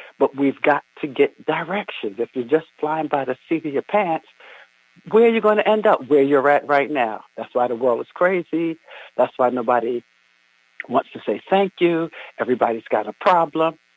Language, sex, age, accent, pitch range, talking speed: English, male, 60-79, American, 125-190 Hz, 200 wpm